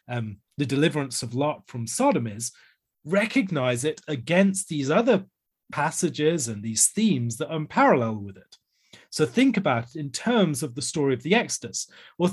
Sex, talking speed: male, 175 wpm